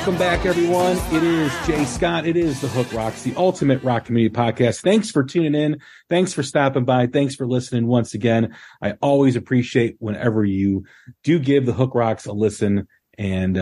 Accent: American